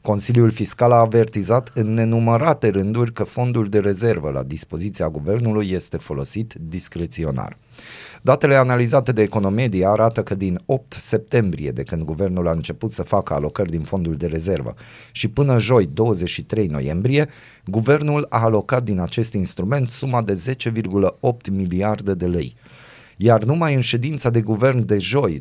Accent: native